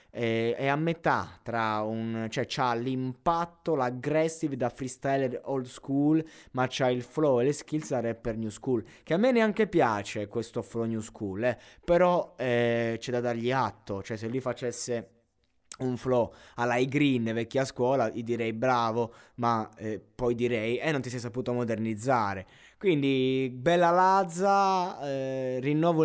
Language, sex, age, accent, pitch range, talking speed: Italian, male, 20-39, native, 110-145 Hz, 155 wpm